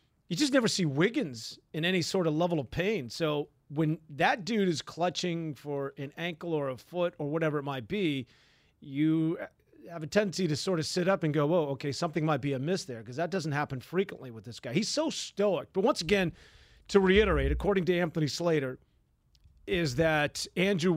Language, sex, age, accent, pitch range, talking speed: English, male, 40-59, American, 145-180 Hz, 200 wpm